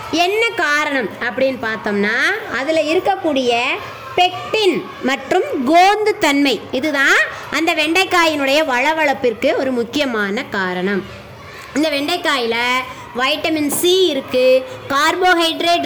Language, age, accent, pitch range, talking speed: Tamil, 20-39, native, 260-345 Hz, 85 wpm